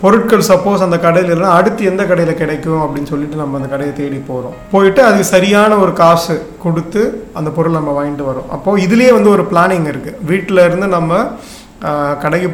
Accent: native